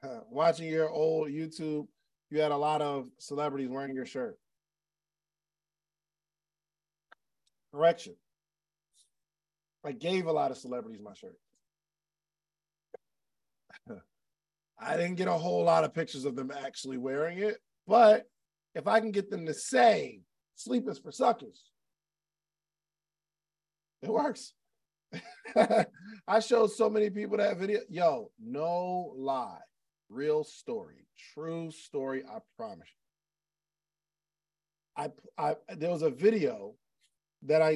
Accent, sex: American, male